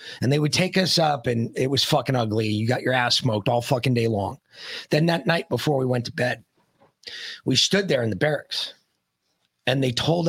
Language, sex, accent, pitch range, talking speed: English, male, American, 130-210 Hz, 215 wpm